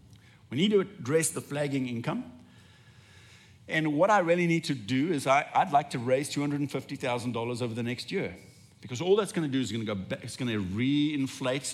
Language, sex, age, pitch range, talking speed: English, male, 50-69, 115-145 Hz, 190 wpm